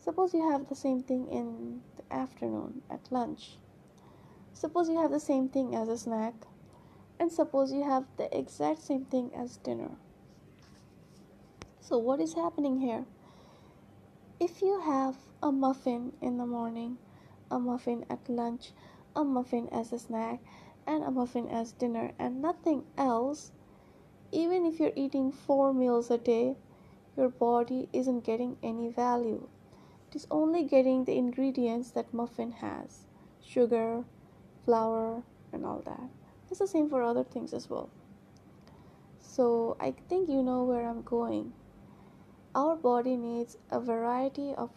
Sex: female